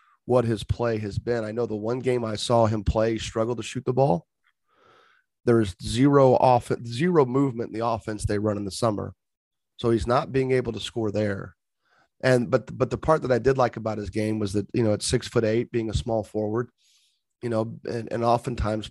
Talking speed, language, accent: 225 wpm, English, American